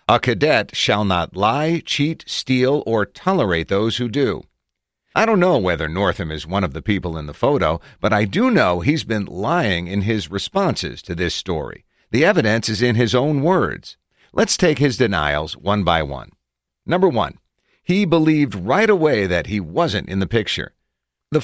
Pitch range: 85-125 Hz